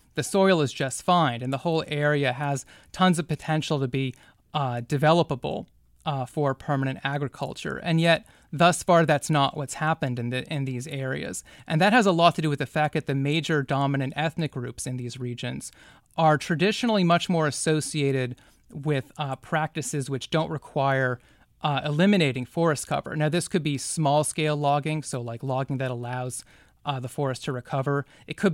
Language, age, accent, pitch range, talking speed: English, 30-49, American, 130-155 Hz, 185 wpm